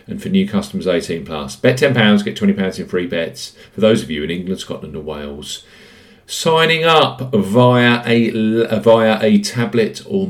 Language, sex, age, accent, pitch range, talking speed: English, male, 50-69, British, 90-125 Hz, 185 wpm